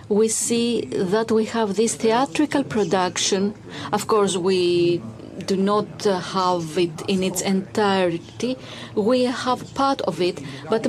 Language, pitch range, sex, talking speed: Greek, 175-230 Hz, female, 130 wpm